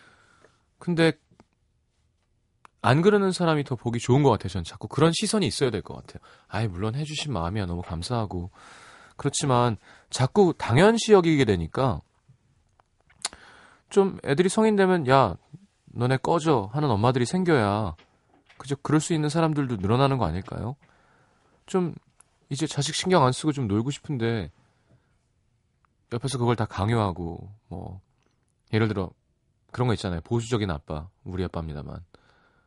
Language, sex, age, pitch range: Korean, male, 30-49, 95-145 Hz